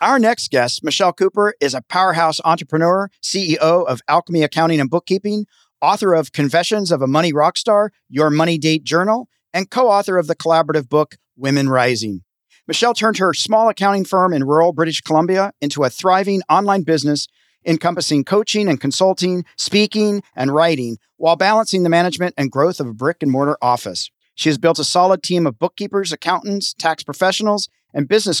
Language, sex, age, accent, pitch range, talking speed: English, male, 40-59, American, 145-190 Hz, 175 wpm